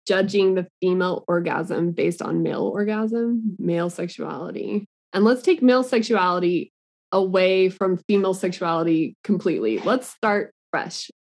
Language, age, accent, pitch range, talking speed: English, 20-39, American, 175-215 Hz, 125 wpm